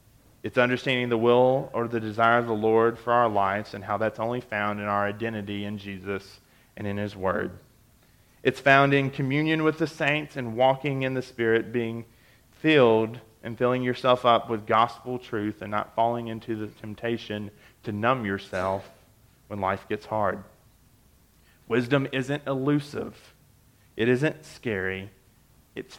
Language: English